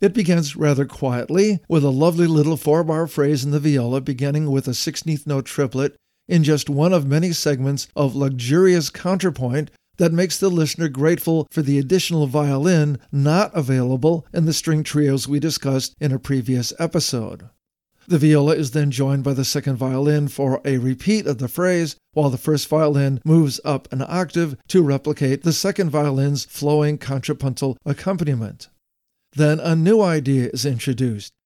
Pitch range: 140-165 Hz